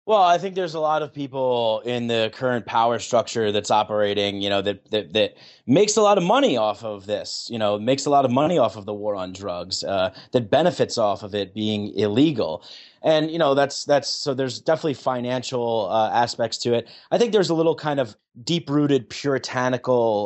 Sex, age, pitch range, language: male, 30-49, 105-135 Hz, English